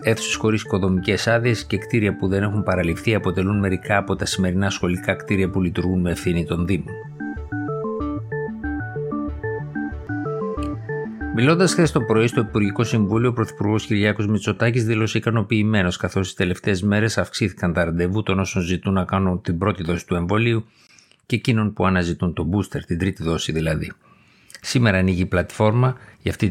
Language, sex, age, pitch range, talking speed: Greek, male, 50-69, 90-110 Hz, 155 wpm